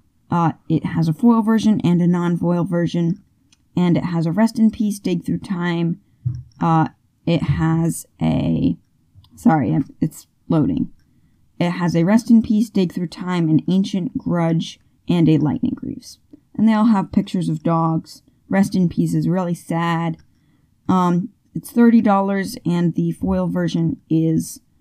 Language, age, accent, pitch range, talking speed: English, 10-29, American, 160-205 Hz, 155 wpm